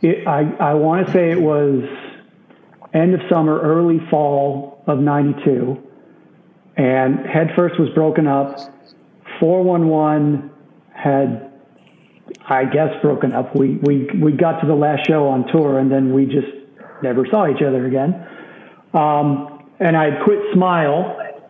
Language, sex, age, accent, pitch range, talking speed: English, male, 50-69, American, 140-170 Hz, 140 wpm